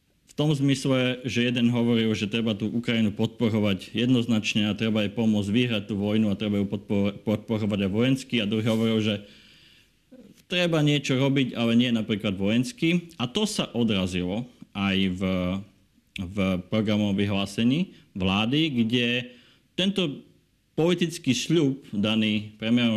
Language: Slovak